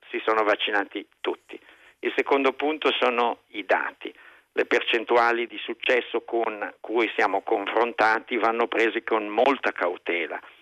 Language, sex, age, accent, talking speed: Italian, male, 50-69, native, 130 wpm